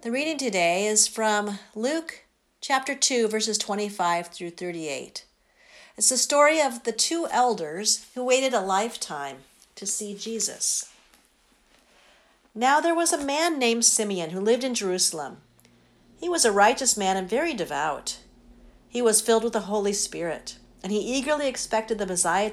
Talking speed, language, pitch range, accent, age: 155 wpm, English, 190-235 Hz, American, 50-69